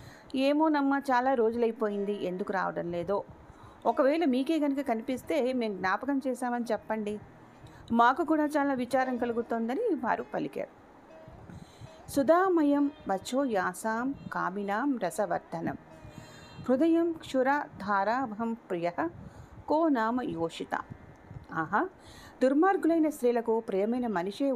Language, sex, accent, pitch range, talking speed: Telugu, female, native, 205-285 Hz, 90 wpm